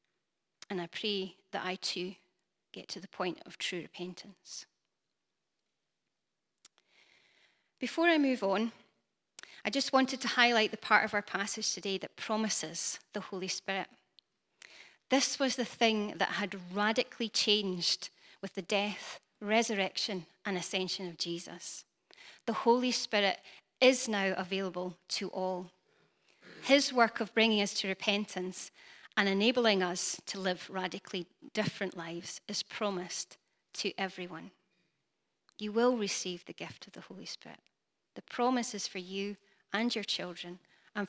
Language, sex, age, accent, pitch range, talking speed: English, female, 30-49, British, 185-230 Hz, 135 wpm